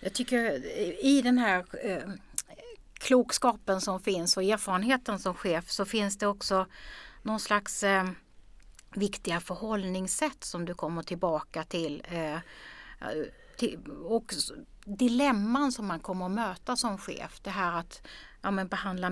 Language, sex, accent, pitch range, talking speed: Swedish, female, native, 175-220 Hz, 120 wpm